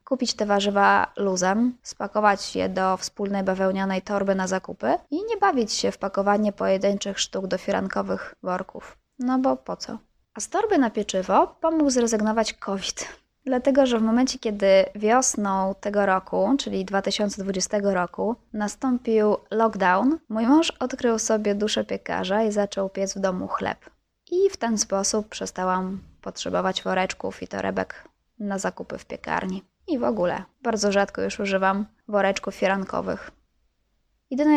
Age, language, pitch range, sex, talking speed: 20-39, Polish, 190-230 Hz, female, 145 wpm